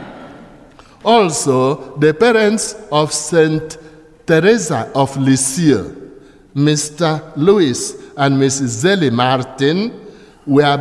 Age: 60-79